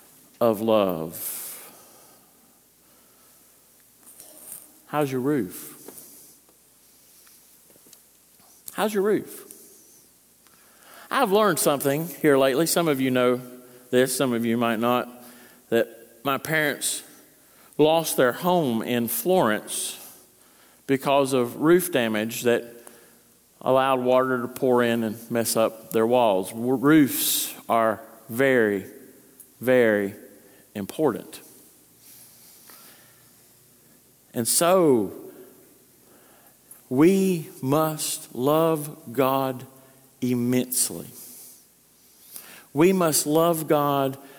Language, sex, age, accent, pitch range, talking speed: English, male, 50-69, American, 120-155 Hz, 85 wpm